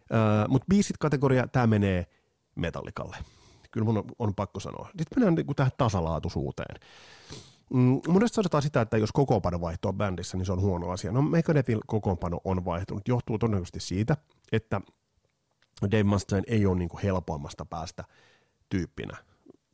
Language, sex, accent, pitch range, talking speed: Finnish, male, native, 95-135 Hz, 145 wpm